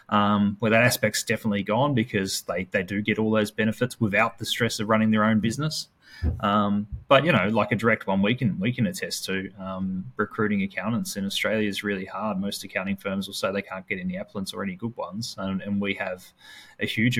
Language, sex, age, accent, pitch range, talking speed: English, male, 20-39, Australian, 100-125 Hz, 225 wpm